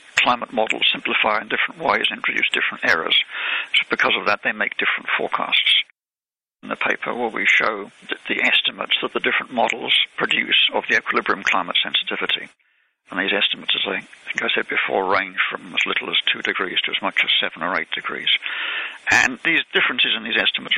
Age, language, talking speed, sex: 60-79, English, 195 wpm, male